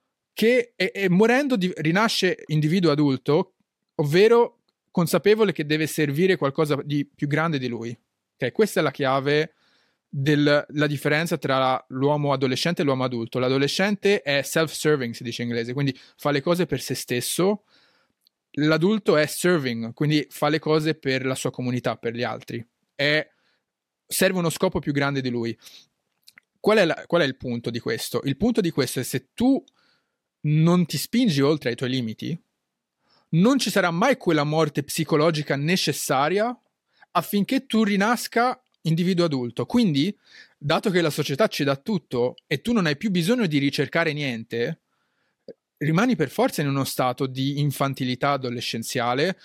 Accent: native